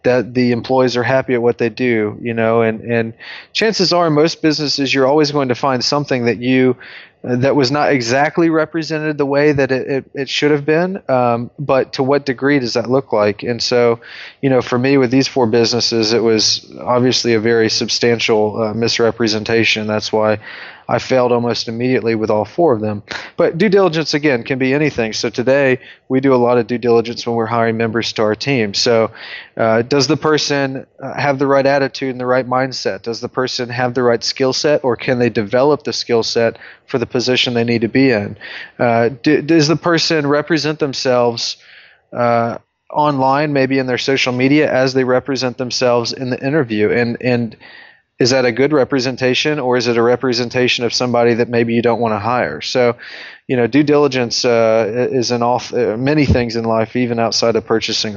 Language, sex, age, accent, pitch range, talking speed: English, male, 20-39, American, 115-135 Hz, 200 wpm